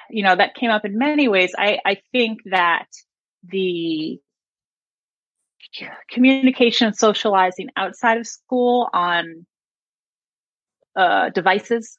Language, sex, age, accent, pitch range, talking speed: English, female, 30-49, American, 190-245 Hz, 110 wpm